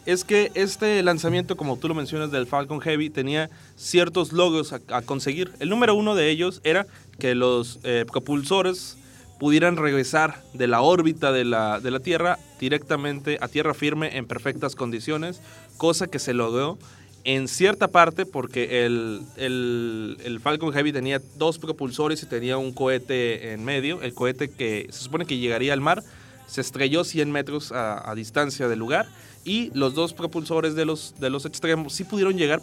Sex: male